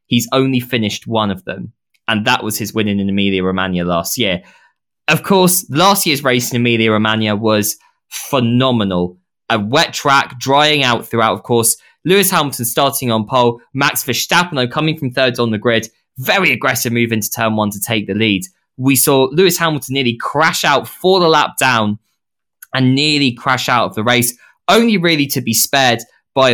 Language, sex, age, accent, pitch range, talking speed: English, male, 10-29, British, 105-135 Hz, 185 wpm